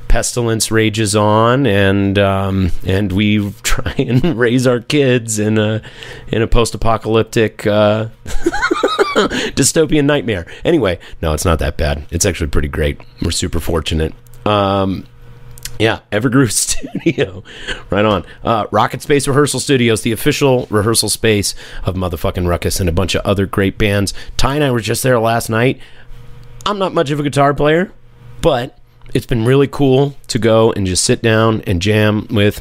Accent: American